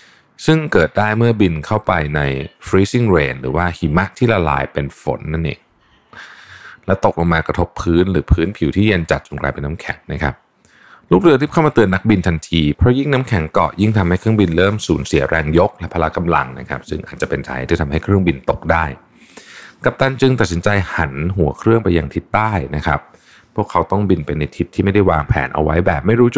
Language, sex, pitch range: Thai, male, 75-100 Hz